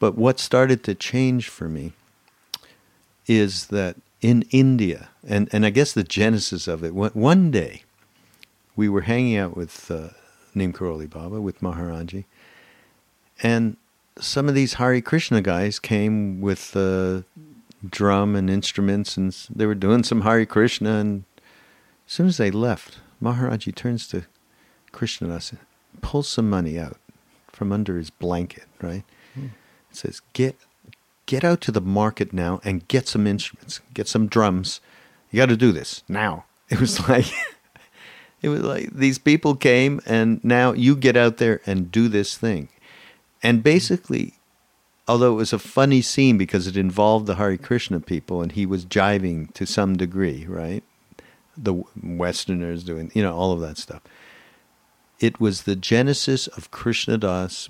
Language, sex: English, male